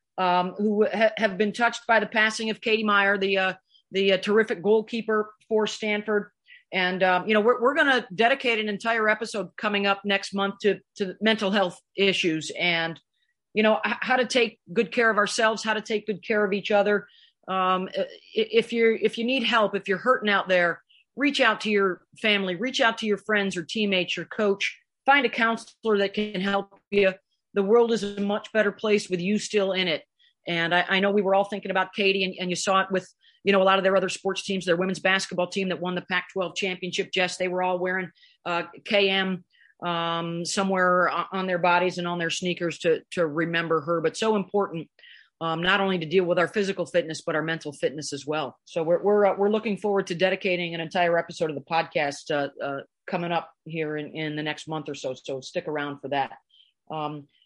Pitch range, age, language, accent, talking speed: 175-215 Hz, 40-59, English, American, 220 wpm